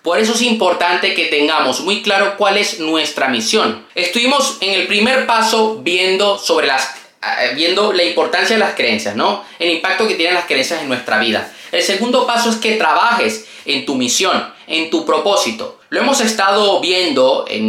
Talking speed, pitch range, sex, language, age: 180 wpm, 160-225 Hz, male, Spanish, 20-39